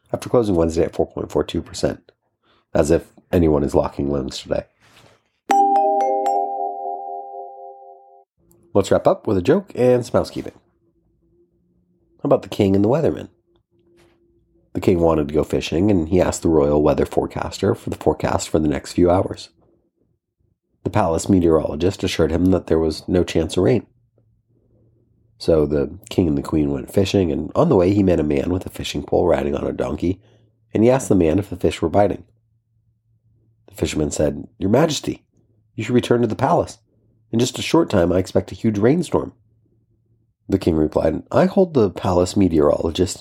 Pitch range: 85-115 Hz